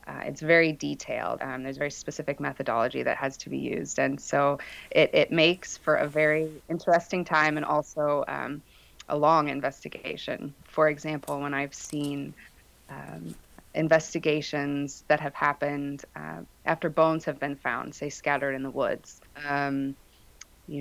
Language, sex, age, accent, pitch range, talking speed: English, female, 20-39, American, 140-155 Hz, 155 wpm